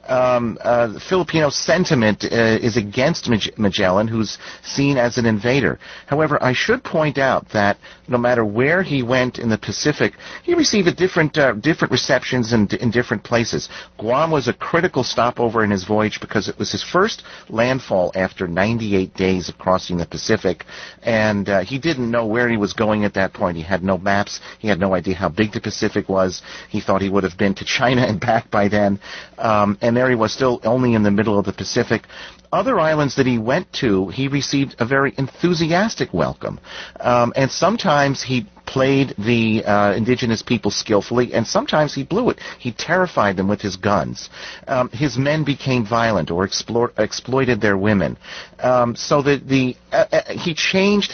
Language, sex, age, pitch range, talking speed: English, male, 40-59, 105-135 Hz, 190 wpm